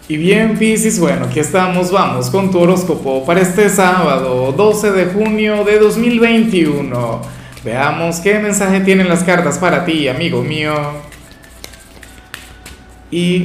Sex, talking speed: male, 130 wpm